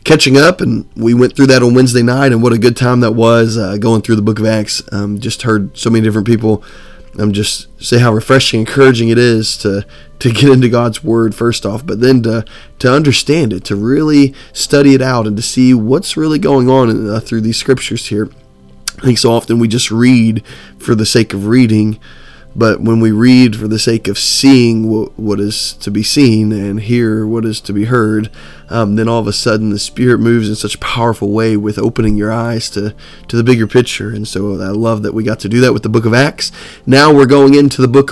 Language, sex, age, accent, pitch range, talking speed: English, male, 20-39, American, 105-130 Hz, 235 wpm